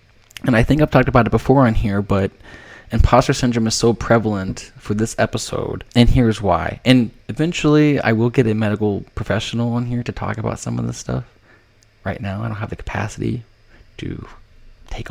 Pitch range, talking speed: 105-120 Hz, 190 wpm